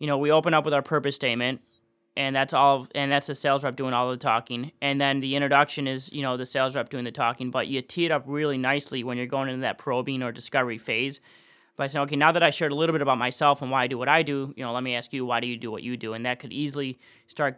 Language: English